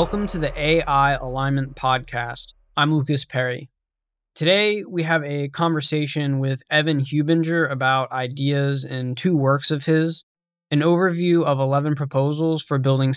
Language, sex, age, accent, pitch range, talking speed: English, male, 20-39, American, 135-165 Hz, 140 wpm